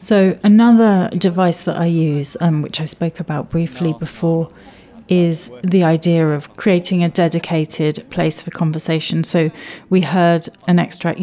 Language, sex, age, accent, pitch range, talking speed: English, female, 30-49, British, 150-175 Hz, 155 wpm